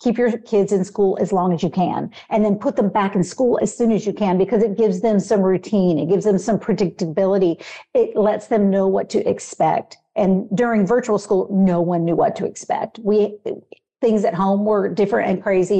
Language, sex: English, female